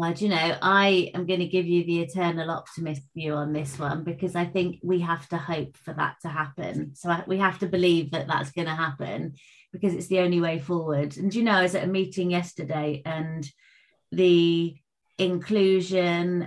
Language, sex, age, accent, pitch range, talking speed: English, female, 30-49, British, 165-185 Hz, 205 wpm